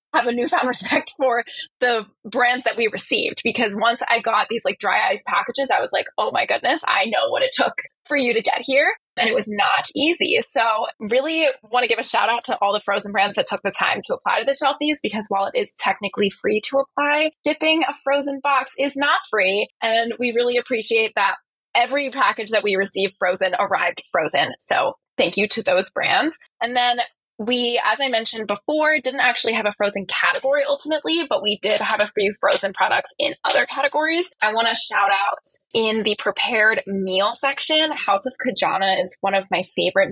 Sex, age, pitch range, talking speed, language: female, 10-29, 205-280 Hz, 210 wpm, English